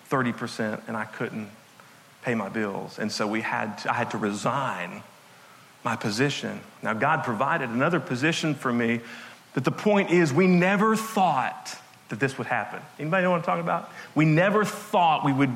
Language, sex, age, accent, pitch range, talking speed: English, male, 40-59, American, 125-180 Hz, 180 wpm